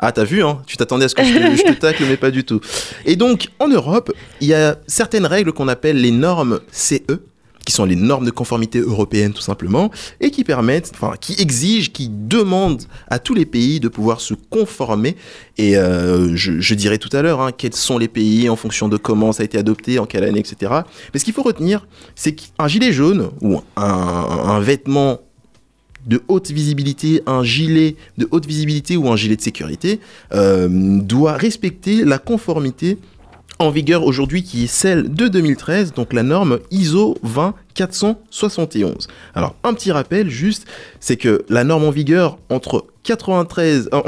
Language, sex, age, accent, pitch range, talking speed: French, male, 20-39, French, 115-190 Hz, 190 wpm